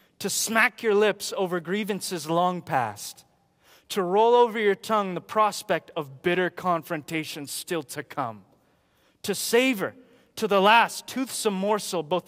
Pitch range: 155-200 Hz